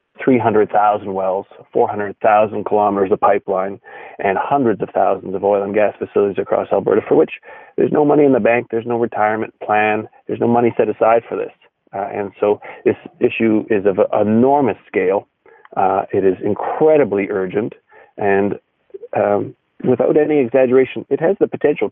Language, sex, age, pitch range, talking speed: English, male, 40-59, 105-130 Hz, 160 wpm